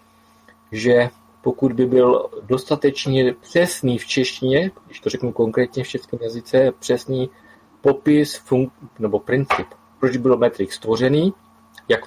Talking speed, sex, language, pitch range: 130 wpm, male, Czech, 120-135 Hz